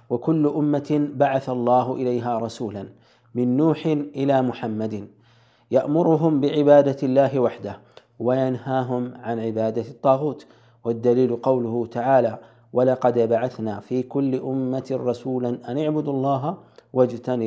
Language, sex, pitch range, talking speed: Amharic, male, 115-140 Hz, 105 wpm